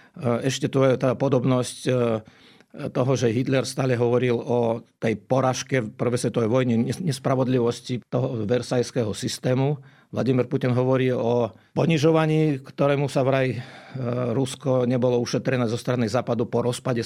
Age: 50-69